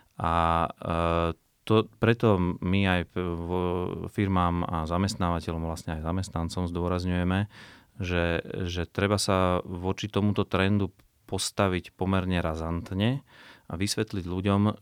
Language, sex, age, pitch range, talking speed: Slovak, male, 30-49, 85-100 Hz, 100 wpm